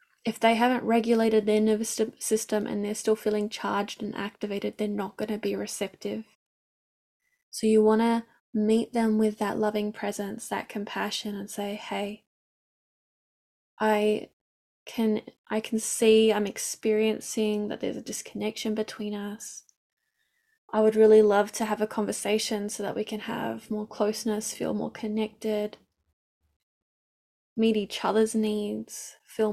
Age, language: 10-29, English